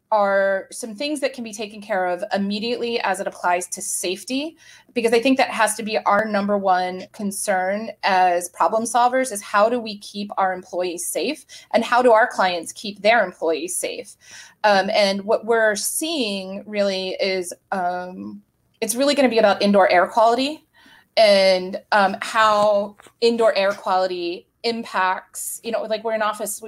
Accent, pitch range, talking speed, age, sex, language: American, 185-230 Hz, 170 wpm, 30-49, female, English